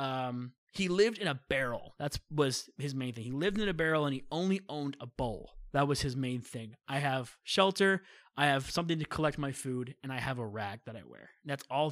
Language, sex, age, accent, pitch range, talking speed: English, male, 20-39, American, 125-150 Hz, 240 wpm